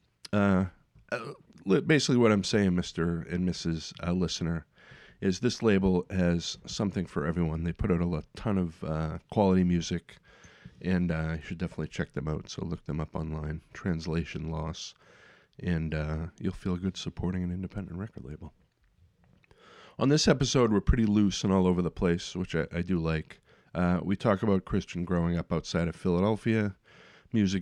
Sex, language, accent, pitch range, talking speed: male, English, American, 85-95 Hz, 170 wpm